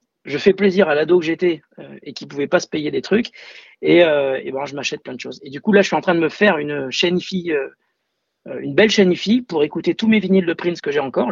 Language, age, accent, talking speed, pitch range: French, 40-59, French, 285 wpm, 145-200 Hz